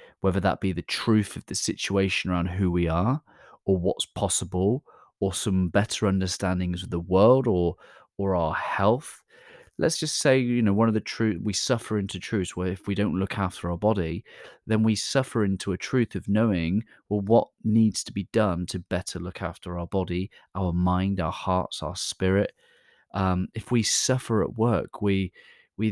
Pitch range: 95-110 Hz